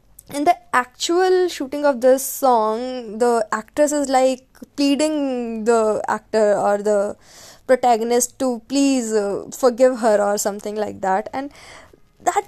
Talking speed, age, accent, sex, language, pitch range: 135 wpm, 20-39, native, female, Hindi, 225-285 Hz